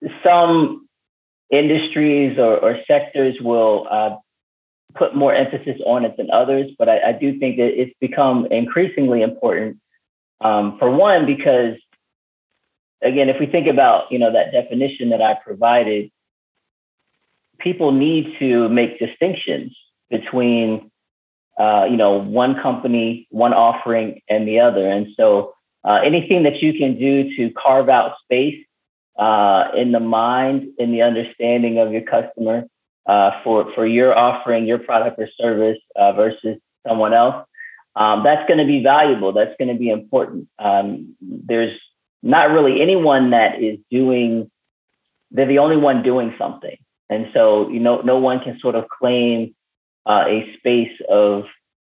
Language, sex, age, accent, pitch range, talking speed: English, male, 30-49, American, 110-135 Hz, 150 wpm